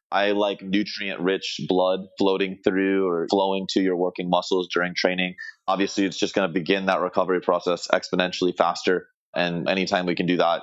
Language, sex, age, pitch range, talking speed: English, male, 30-49, 90-105 Hz, 175 wpm